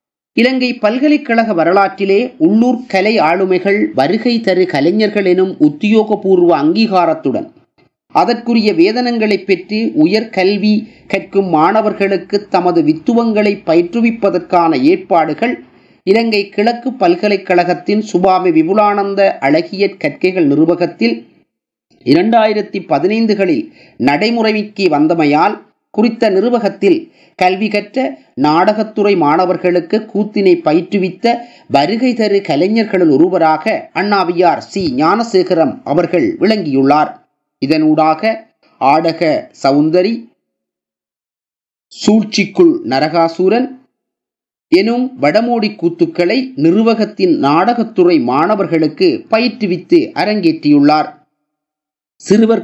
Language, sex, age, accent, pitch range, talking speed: Tamil, male, 30-49, native, 175-230 Hz, 75 wpm